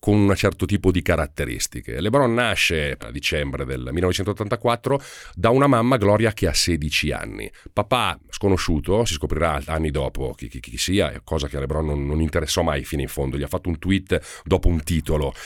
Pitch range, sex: 80-120 Hz, male